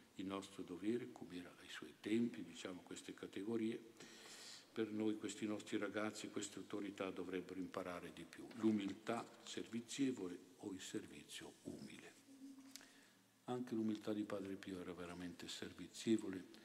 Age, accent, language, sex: 50-69, native, Italian, male